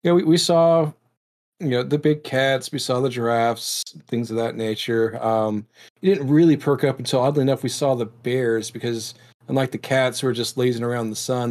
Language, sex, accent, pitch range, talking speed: English, male, American, 110-130 Hz, 230 wpm